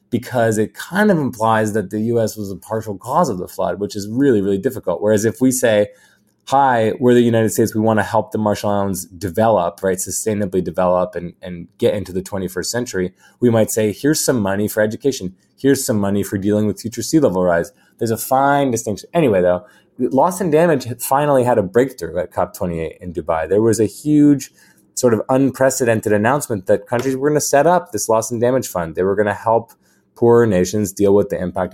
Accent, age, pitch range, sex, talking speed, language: American, 20-39, 95-120 Hz, male, 215 wpm, English